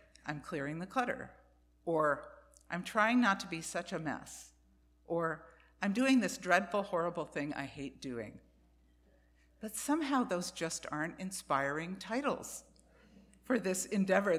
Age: 60-79